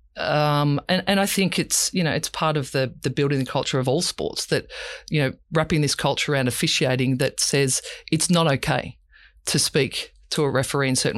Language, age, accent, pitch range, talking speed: English, 40-59, Australian, 140-170 Hz, 210 wpm